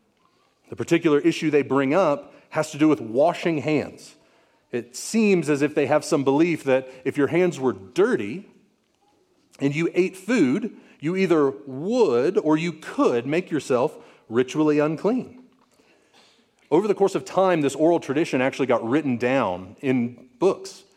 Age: 40-59